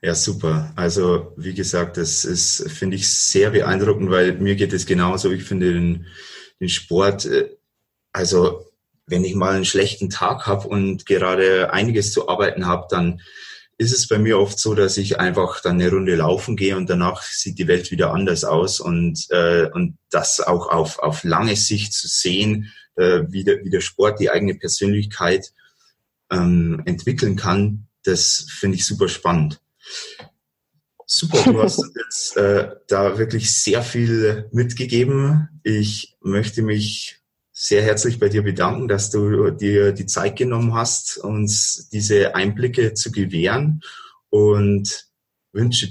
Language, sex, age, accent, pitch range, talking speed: German, male, 30-49, German, 95-115 Hz, 155 wpm